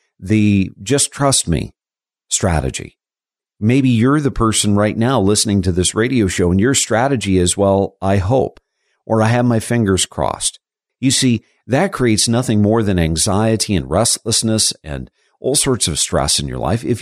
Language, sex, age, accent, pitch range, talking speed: English, male, 50-69, American, 90-120 Hz, 170 wpm